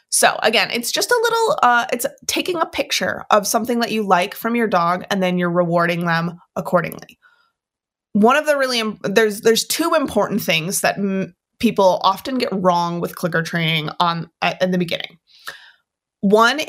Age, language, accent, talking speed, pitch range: 20-39, English, American, 180 wpm, 180-235 Hz